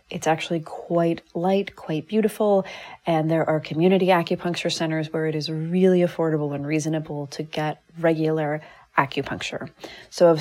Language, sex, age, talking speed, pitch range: English, female, 30-49, 145 wpm, 160-195 Hz